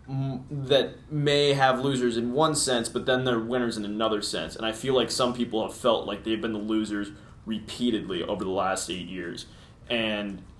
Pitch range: 110-125 Hz